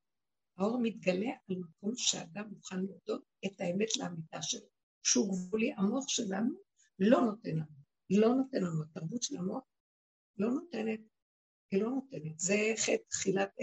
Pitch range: 180-250 Hz